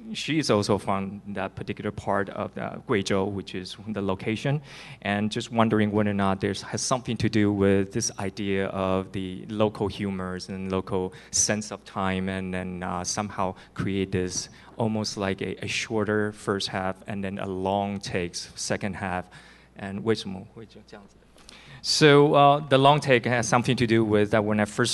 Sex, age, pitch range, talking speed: male, 20-39, 95-110 Hz, 180 wpm